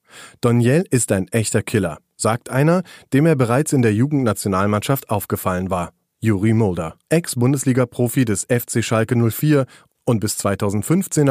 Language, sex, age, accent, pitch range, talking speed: German, male, 30-49, German, 105-130 Hz, 135 wpm